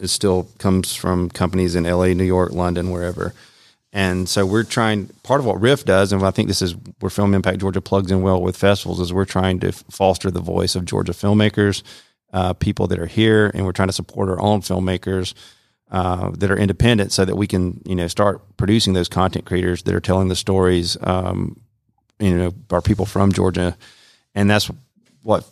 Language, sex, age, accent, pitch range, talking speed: English, male, 30-49, American, 90-100 Hz, 205 wpm